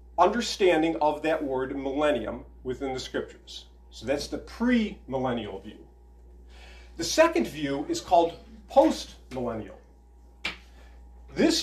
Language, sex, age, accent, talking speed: English, male, 40-59, American, 115 wpm